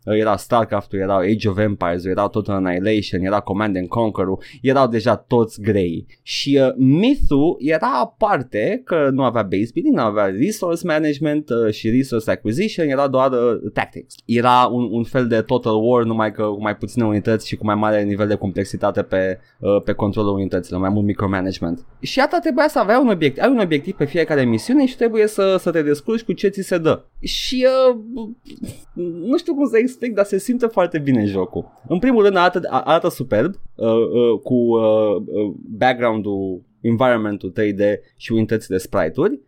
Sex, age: male, 20-39